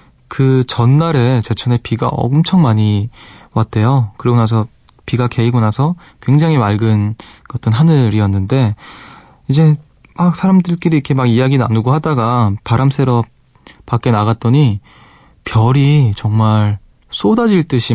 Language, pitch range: Korean, 110-140 Hz